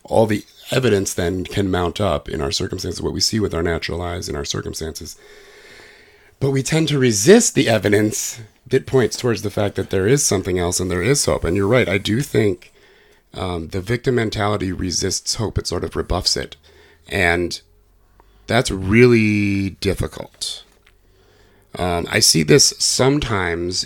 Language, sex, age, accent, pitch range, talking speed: English, male, 30-49, American, 90-115 Hz, 170 wpm